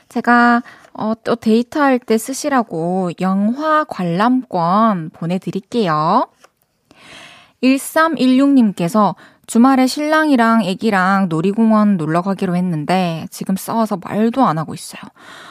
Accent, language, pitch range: native, Korean, 180-255 Hz